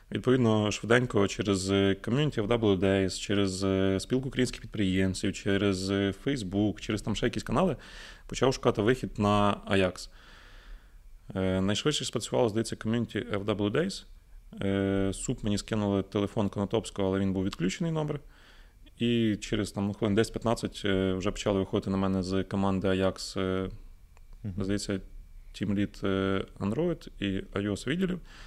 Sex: male